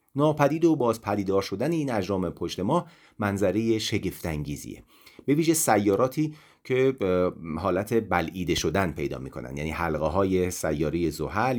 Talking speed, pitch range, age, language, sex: 130 wpm, 80-135 Hz, 40-59, Persian, male